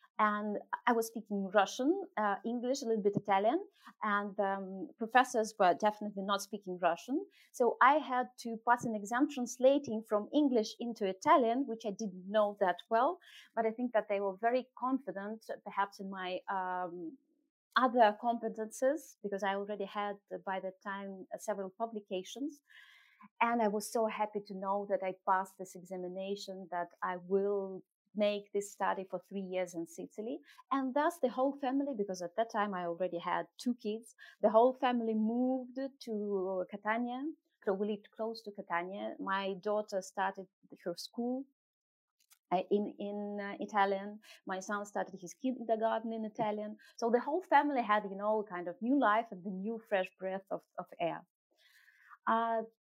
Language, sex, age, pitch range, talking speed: English, female, 30-49, 195-250 Hz, 165 wpm